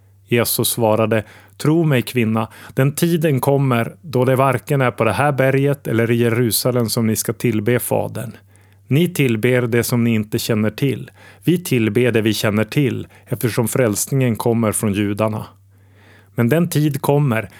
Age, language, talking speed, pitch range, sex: 30-49, Swedish, 160 wpm, 105-130 Hz, male